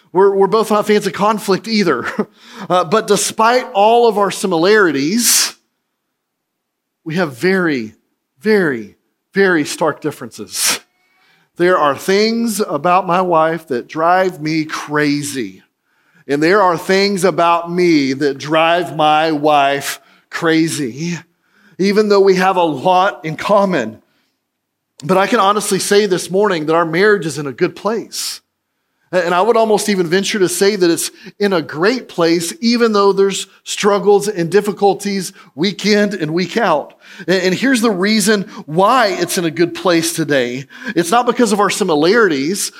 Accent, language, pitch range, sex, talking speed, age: American, English, 170-210 Hz, male, 150 wpm, 40-59